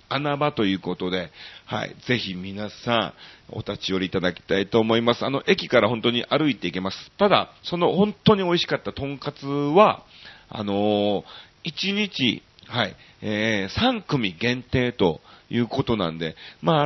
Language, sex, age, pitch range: Japanese, male, 40-59, 100-155 Hz